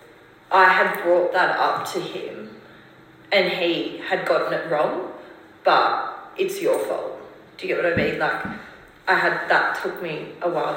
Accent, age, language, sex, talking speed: Australian, 20-39, English, female, 175 wpm